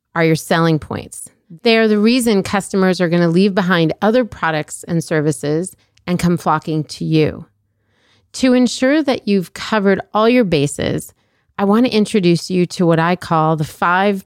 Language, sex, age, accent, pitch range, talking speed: English, female, 30-49, American, 165-215 Hz, 165 wpm